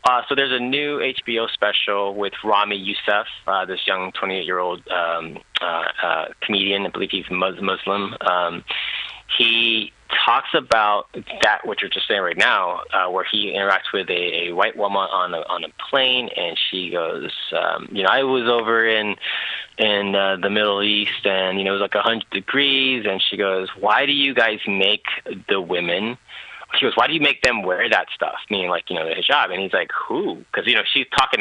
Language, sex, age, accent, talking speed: English, male, 20-39, American, 200 wpm